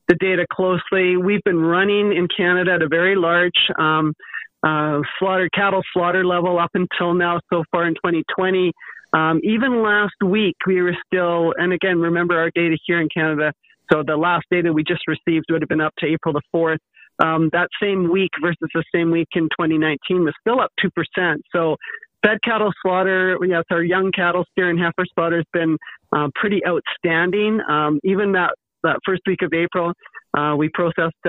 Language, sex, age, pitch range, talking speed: English, male, 40-59, 165-195 Hz, 190 wpm